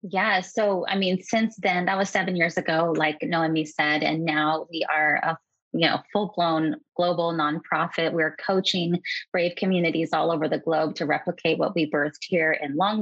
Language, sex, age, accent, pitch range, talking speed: English, female, 20-39, American, 165-190 Hz, 185 wpm